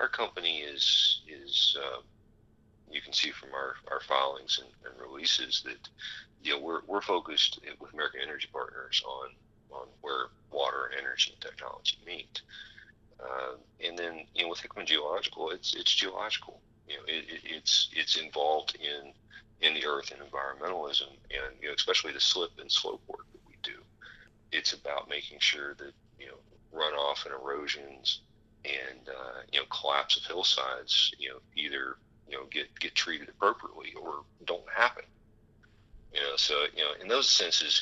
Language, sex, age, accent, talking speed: English, male, 40-59, American, 170 wpm